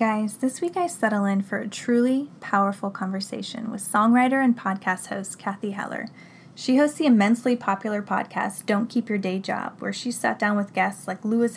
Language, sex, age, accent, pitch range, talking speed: English, female, 10-29, American, 195-230 Hz, 190 wpm